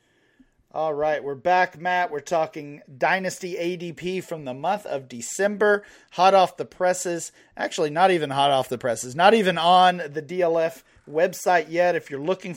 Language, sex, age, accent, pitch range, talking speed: English, male, 40-59, American, 145-180 Hz, 165 wpm